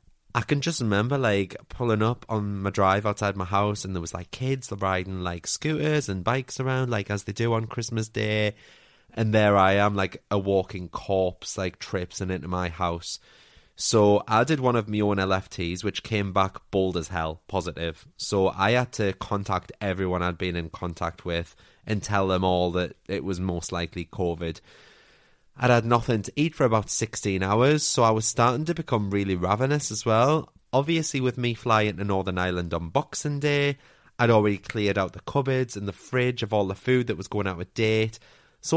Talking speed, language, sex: 200 wpm, English, male